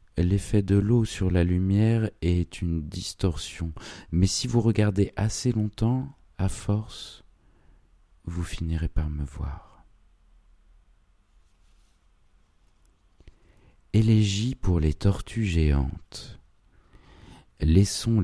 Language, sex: French, male